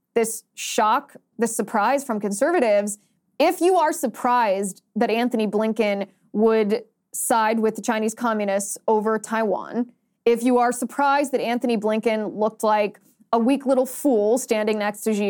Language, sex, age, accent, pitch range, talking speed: English, female, 20-39, American, 210-260 Hz, 150 wpm